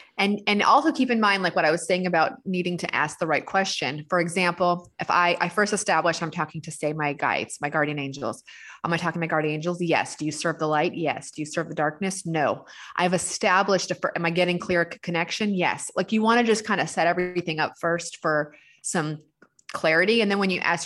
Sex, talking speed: female, 235 wpm